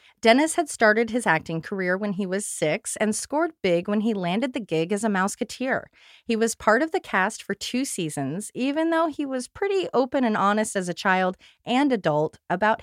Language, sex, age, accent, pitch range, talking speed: English, female, 30-49, American, 170-245 Hz, 205 wpm